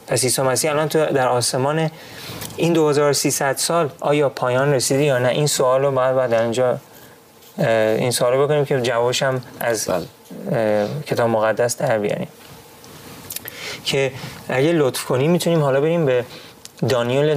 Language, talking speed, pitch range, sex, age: Persian, 145 wpm, 125-155 Hz, male, 30-49